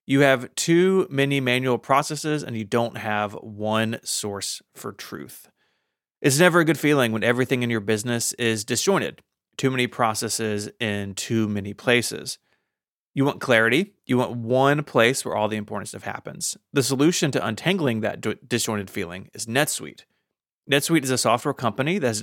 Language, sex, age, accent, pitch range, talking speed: English, male, 30-49, American, 110-145 Hz, 165 wpm